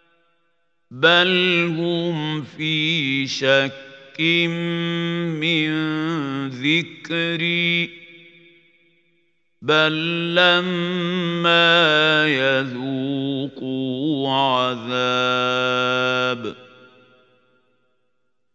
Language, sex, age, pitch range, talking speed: Arabic, male, 50-69, 130-170 Hz, 30 wpm